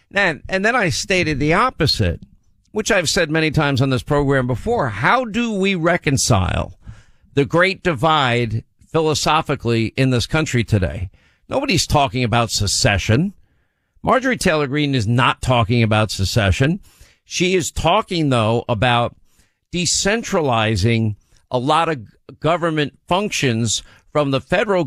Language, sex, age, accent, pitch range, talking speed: English, male, 50-69, American, 115-170 Hz, 130 wpm